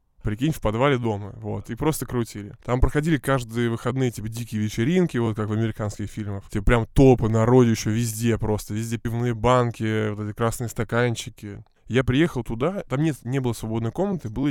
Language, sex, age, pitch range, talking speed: Russian, male, 20-39, 110-130 Hz, 180 wpm